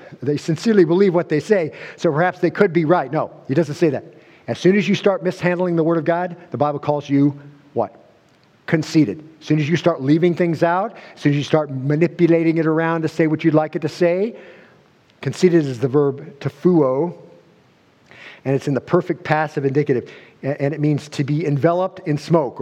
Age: 50-69